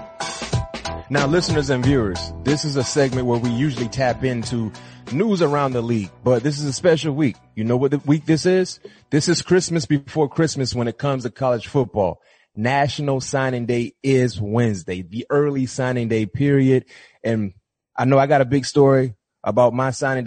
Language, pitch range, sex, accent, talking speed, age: English, 120-145 Hz, male, American, 185 wpm, 30-49